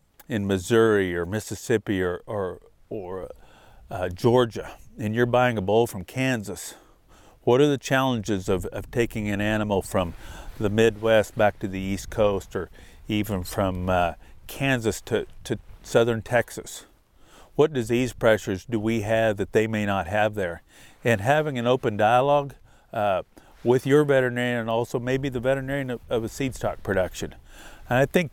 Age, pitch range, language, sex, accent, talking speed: 50-69, 100-125 Hz, English, male, American, 165 wpm